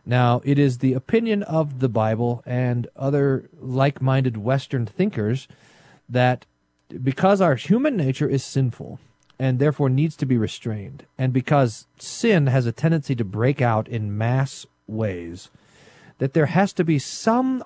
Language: English